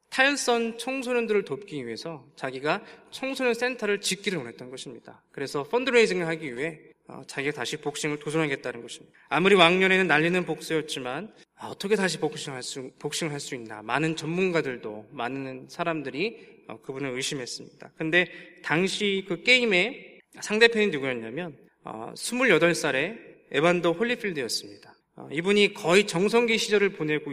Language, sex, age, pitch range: Korean, male, 20-39, 150-195 Hz